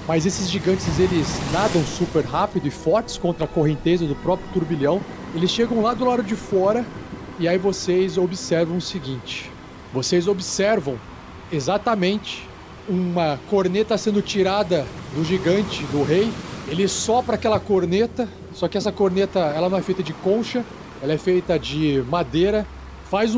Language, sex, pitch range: Portuguese, male, 155-210 Hz